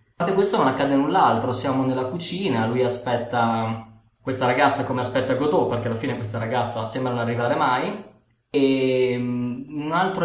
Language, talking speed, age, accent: Italian, 165 wpm, 20-39, native